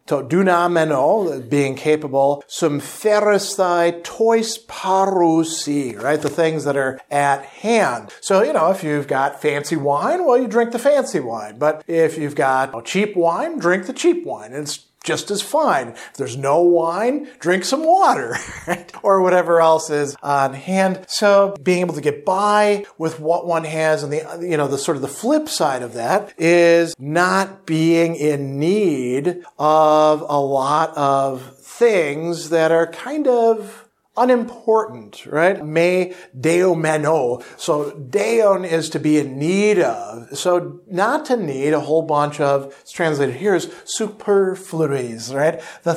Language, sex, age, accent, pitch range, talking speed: English, male, 50-69, American, 150-195 Hz, 155 wpm